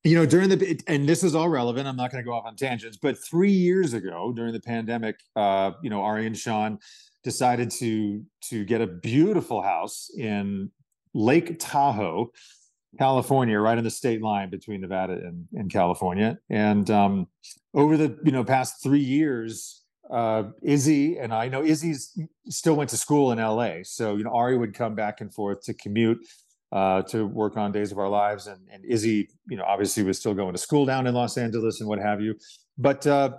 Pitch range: 105-135 Hz